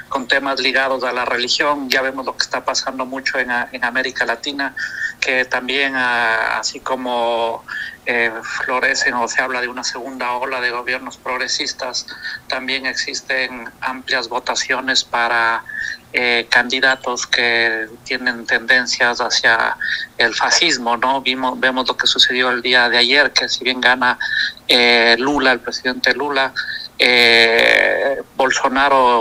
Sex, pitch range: male, 120-130 Hz